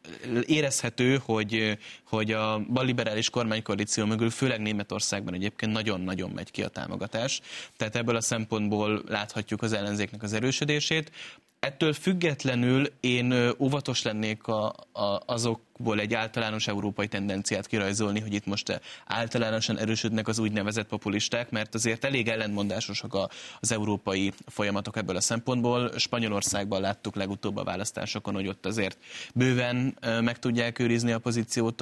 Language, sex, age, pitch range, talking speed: Hungarian, male, 10-29, 105-120 Hz, 130 wpm